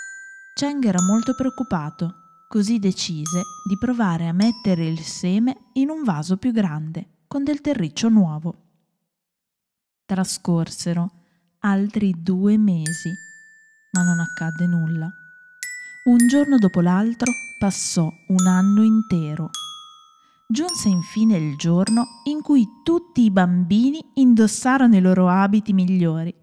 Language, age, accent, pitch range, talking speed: Italian, 20-39, native, 175-240 Hz, 115 wpm